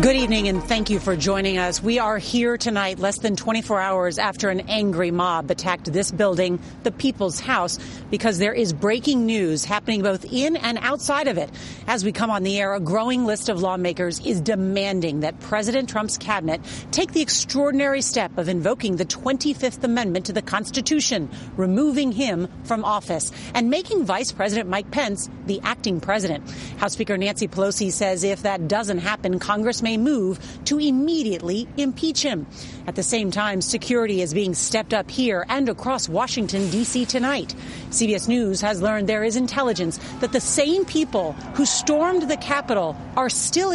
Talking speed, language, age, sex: 175 wpm, English, 40-59, female